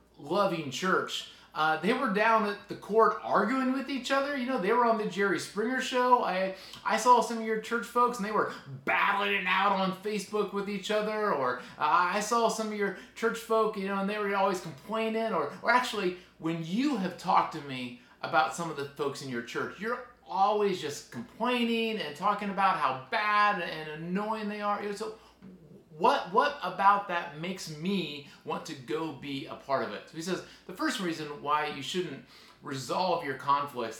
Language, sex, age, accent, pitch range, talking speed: English, male, 30-49, American, 140-210 Hz, 200 wpm